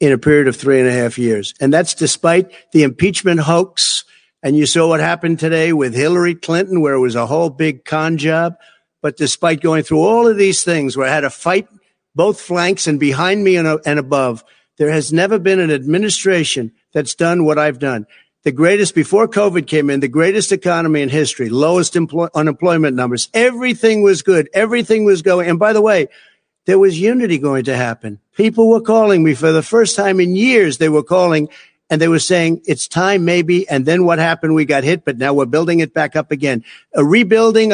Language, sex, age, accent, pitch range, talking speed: English, male, 60-79, American, 150-190 Hz, 210 wpm